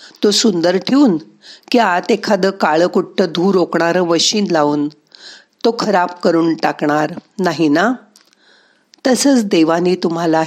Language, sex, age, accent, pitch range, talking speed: Marathi, female, 50-69, native, 155-220 Hz, 90 wpm